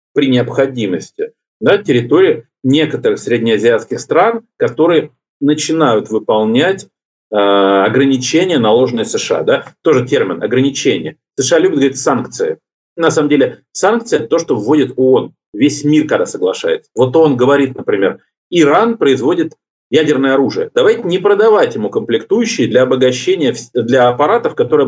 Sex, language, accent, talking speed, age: male, Russian, native, 130 wpm, 40-59